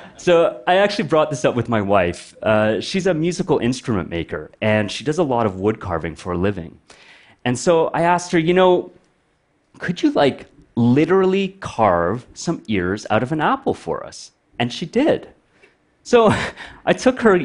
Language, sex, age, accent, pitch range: Chinese, male, 30-49, American, 105-170 Hz